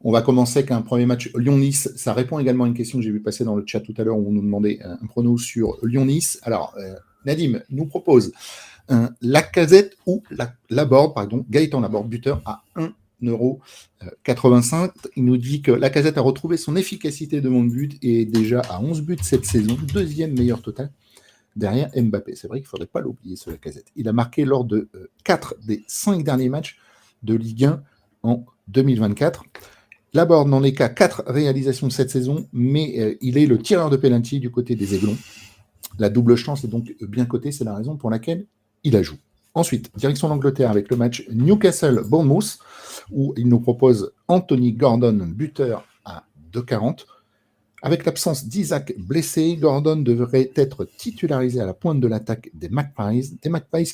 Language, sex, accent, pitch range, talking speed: French, male, French, 115-145 Hz, 185 wpm